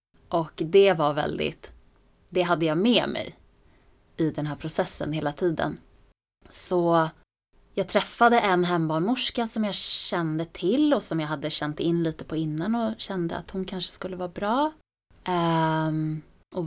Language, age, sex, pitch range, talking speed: Swedish, 20-39, female, 155-180 Hz, 150 wpm